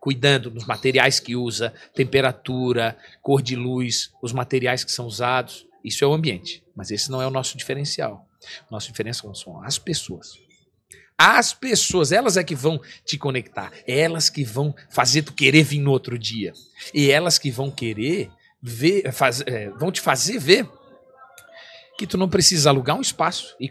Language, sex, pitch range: Portuguese, male, 125-165 Hz